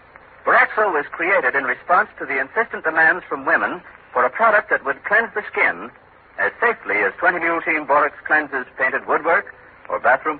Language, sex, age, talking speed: English, male, 60-79, 175 wpm